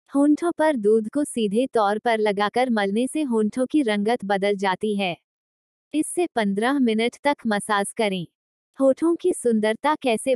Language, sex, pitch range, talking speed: Hindi, female, 210-265 Hz, 150 wpm